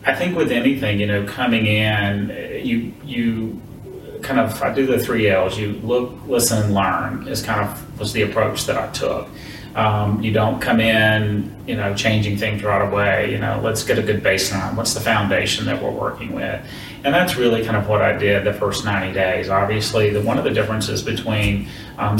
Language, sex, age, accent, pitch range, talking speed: English, male, 30-49, American, 100-115 Hz, 205 wpm